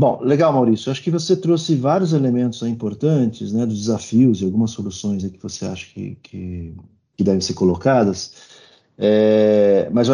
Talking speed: 180 wpm